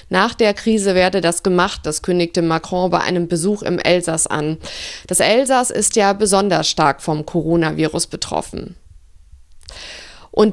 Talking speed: 140 wpm